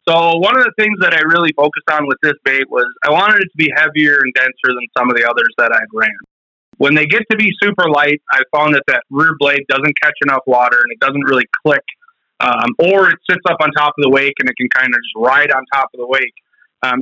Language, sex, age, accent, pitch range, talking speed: English, male, 30-49, American, 135-170 Hz, 265 wpm